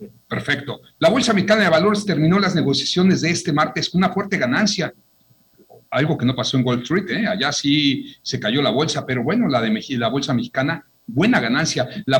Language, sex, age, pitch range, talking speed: Spanish, male, 50-69, 125-175 Hz, 200 wpm